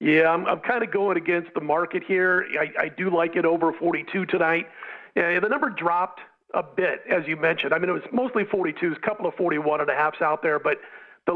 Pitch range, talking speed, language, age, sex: 165-195 Hz, 230 wpm, English, 40-59, male